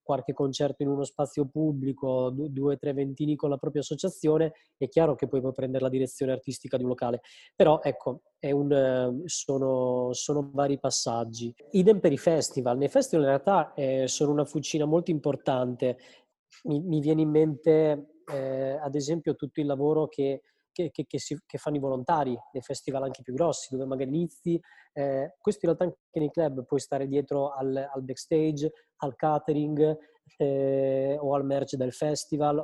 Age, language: 20-39, Italian